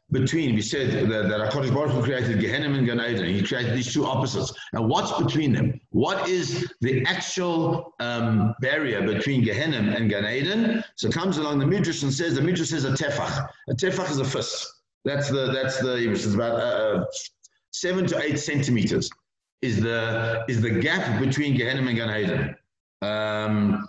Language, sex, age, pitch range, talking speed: English, male, 50-69, 115-150 Hz, 180 wpm